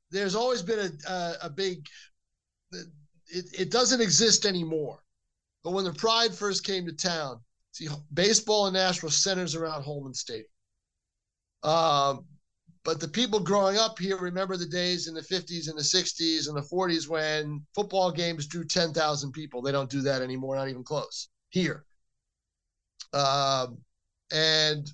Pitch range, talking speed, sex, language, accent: 150-185 Hz, 155 wpm, male, English, American